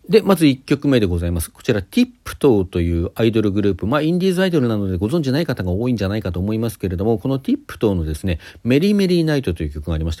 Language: Japanese